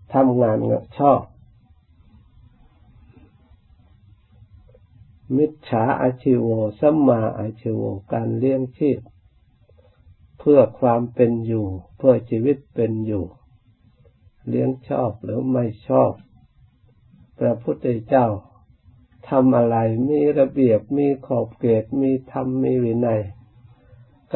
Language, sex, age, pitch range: Thai, male, 60-79, 105-130 Hz